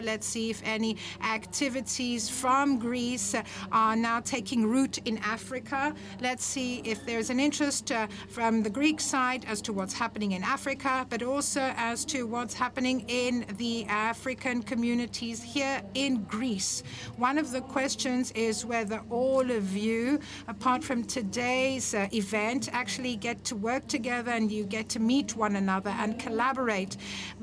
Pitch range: 225-265 Hz